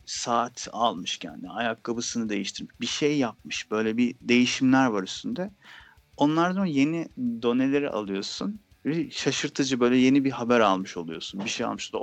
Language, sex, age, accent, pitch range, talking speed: Turkish, male, 40-59, native, 110-145 Hz, 140 wpm